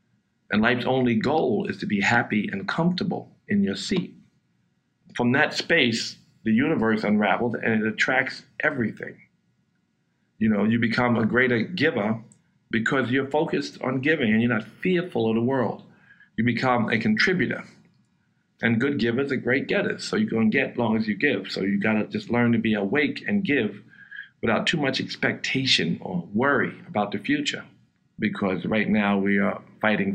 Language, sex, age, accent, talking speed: English, male, 50-69, American, 175 wpm